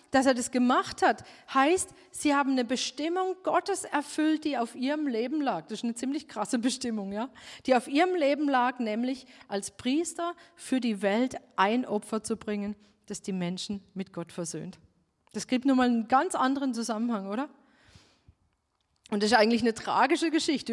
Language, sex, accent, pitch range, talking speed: German, female, German, 235-295 Hz, 175 wpm